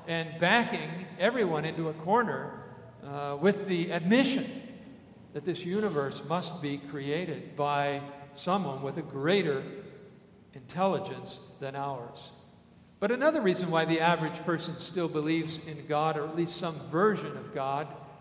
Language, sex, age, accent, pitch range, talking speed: English, male, 50-69, American, 150-195 Hz, 140 wpm